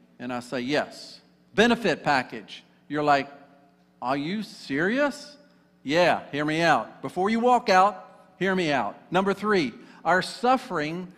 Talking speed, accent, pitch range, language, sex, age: 140 wpm, American, 155-210 Hz, English, male, 50-69